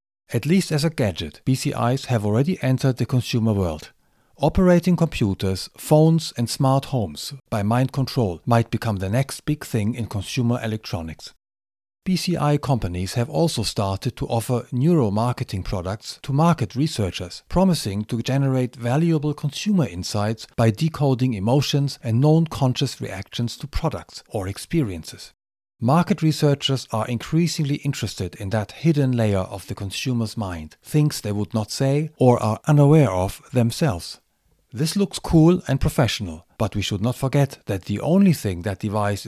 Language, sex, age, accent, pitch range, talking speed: English, male, 40-59, German, 105-145 Hz, 150 wpm